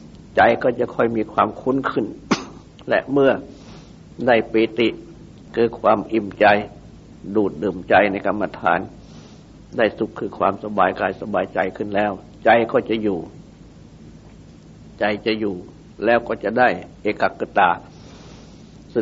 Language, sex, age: Thai, male, 60-79